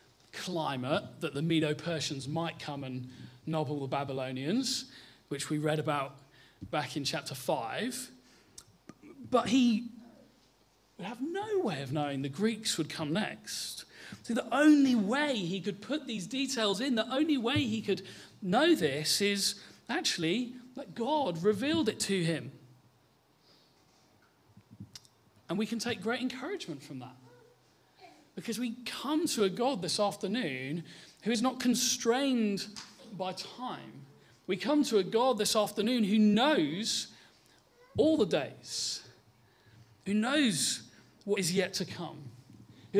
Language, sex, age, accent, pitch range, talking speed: English, male, 40-59, British, 155-245 Hz, 135 wpm